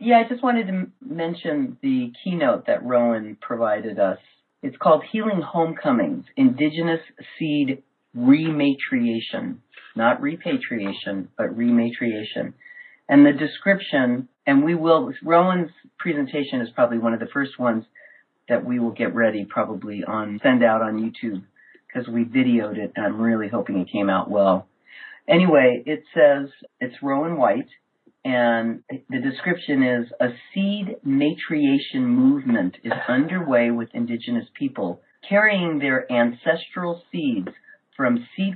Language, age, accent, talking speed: English, 40-59, American, 135 wpm